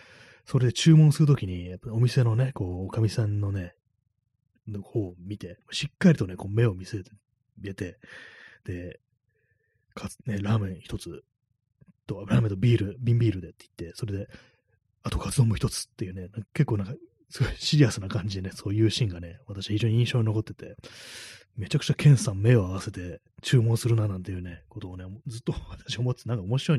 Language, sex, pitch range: Japanese, male, 100-125 Hz